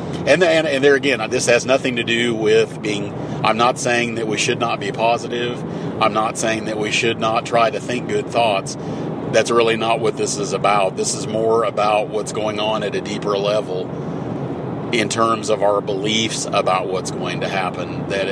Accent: American